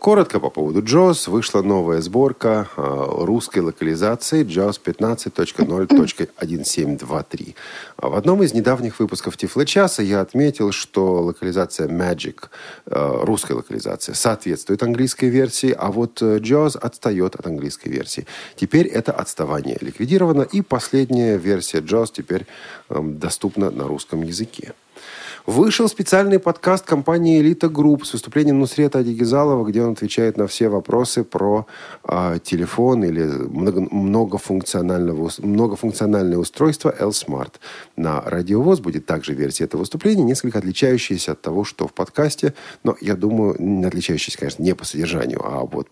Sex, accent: male, native